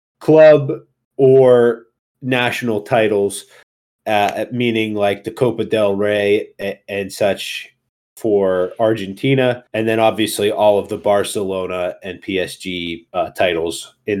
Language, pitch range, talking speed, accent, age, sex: English, 100-125 Hz, 115 wpm, American, 30-49, male